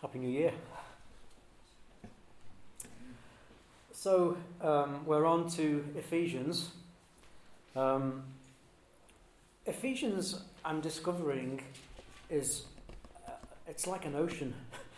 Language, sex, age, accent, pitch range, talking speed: English, male, 40-59, British, 125-150 Hz, 75 wpm